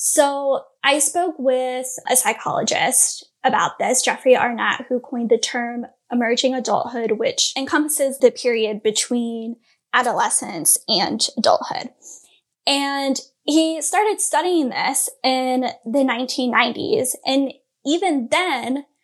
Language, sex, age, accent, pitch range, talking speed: English, female, 10-29, American, 250-295 Hz, 110 wpm